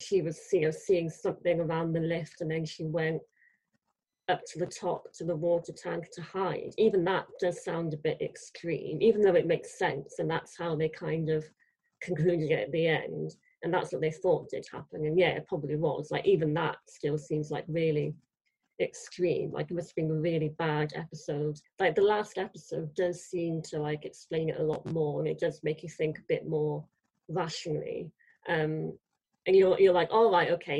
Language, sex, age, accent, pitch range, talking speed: English, female, 30-49, British, 160-180 Hz, 205 wpm